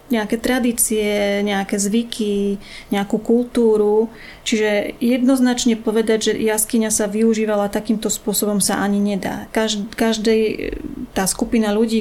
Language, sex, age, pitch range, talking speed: Slovak, female, 30-49, 200-225 Hz, 110 wpm